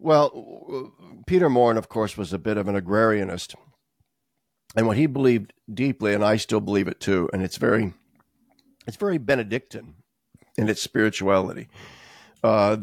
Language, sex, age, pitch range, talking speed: English, male, 60-79, 100-125 Hz, 150 wpm